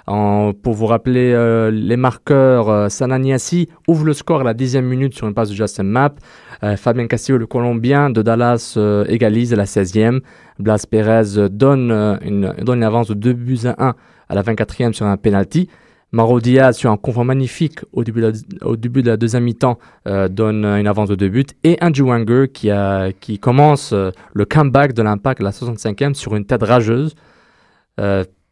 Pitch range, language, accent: 105-130 Hz, French, French